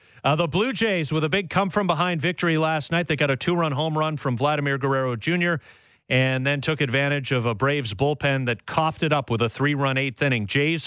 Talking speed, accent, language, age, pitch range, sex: 225 wpm, American, English, 40-59, 120-150 Hz, male